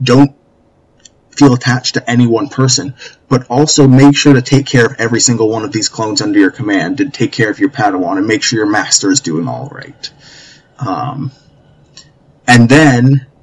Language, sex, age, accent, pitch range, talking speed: English, male, 20-39, American, 115-145 Hz, 190 wpm